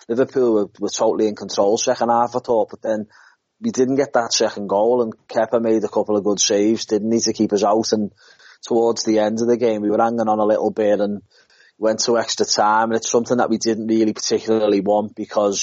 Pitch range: 105-115 Hz